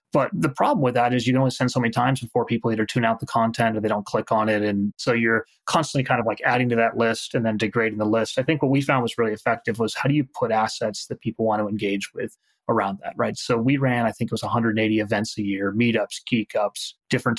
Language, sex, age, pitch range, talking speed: English, male, 30-49, 110-130 Hz, 275 wpm